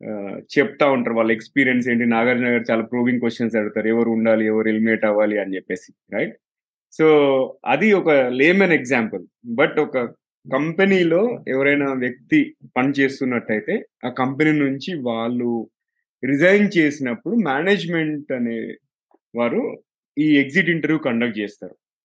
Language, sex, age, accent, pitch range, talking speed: Telugu, male, 20-39, native, 125-165 Hz, 120 wpm